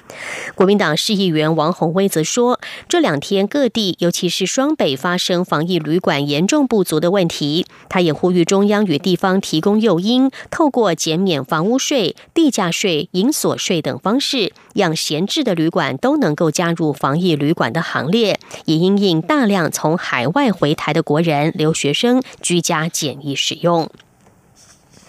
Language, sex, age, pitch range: German, female, 30-49, 160-205 Hz